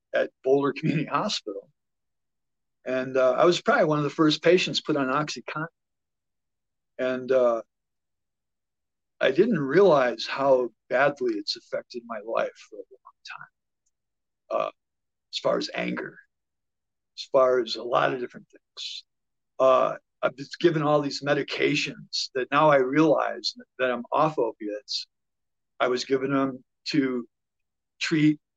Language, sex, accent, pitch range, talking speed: English, male, American, 135-180 Hz, 140 wpm